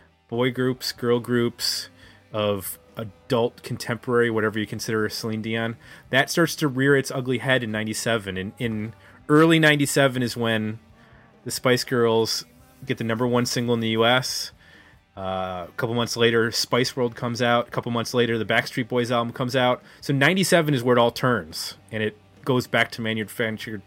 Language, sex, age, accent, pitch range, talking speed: English, male, 30-49, American, 110-135 Hz, 185 wpm